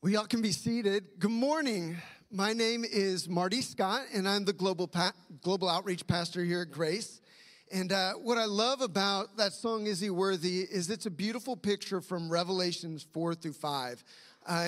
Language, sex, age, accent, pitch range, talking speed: English, male, 40-59, American, 175-210 Hz, 185 wpm